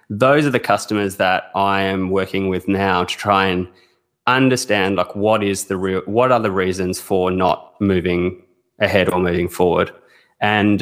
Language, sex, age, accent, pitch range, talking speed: English, male, 20-39, Australian, 95-115 Hz, 170 wpm